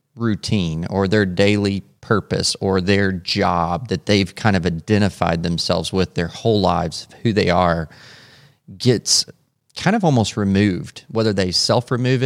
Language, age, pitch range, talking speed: English, 30-49, 95-120 Hz, 140 wpm